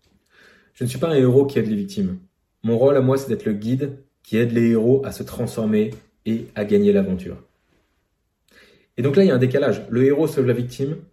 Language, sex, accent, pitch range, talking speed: French, male, French, 105-140 Hz, 225 wpm